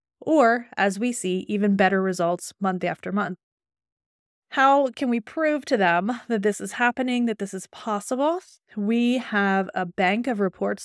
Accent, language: American, English